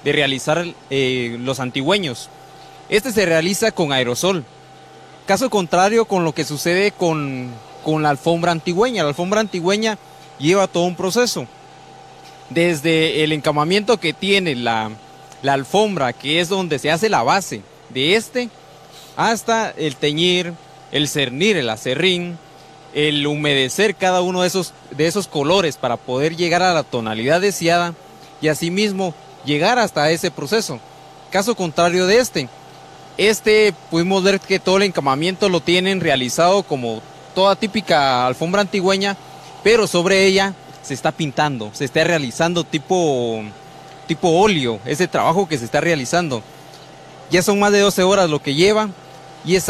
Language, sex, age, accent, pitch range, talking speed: Spanish, male, 30-49, Mexican, 145-195 Hz, 145 wpm